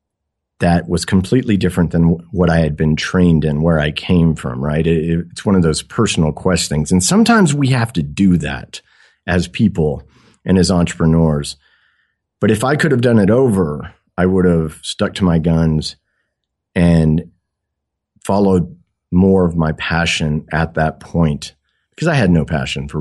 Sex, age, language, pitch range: male, 40-59, English, 80-100 Hz